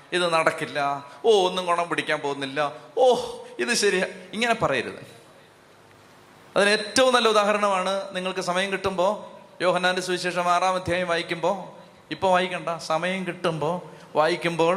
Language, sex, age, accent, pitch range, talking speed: Malayalam, male, 30-49, native, 175-210 Hz, 120 wpm